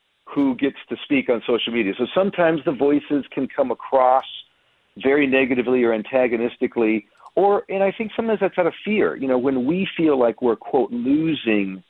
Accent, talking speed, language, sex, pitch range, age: American, 180 wpm, English, male, 115-165 Hz, 50-69